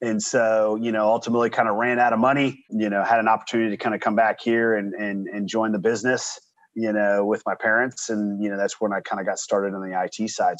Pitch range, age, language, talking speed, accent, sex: 110-135 Hz, 30-49, English, 265 wpm, American, male